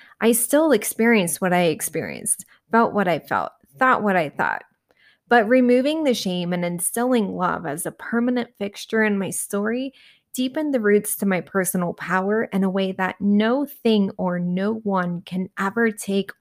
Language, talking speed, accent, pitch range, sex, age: English, 170 wpm, American, 190-235 Hz, female, 20-39